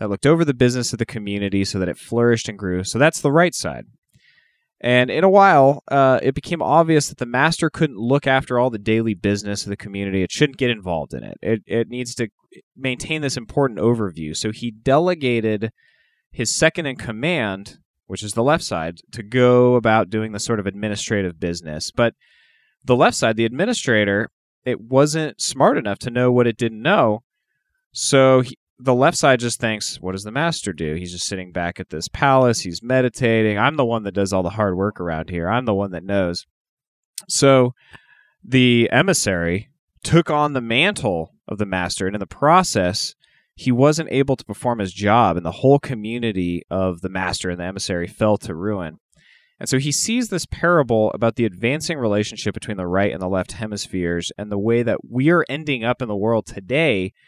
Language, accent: English, American